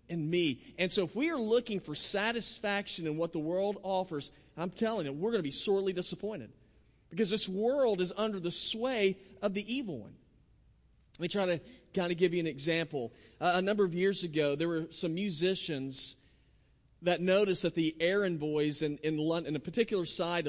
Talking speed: 200 wpm